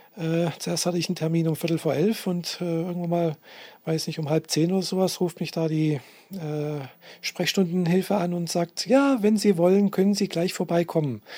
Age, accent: 40-59, German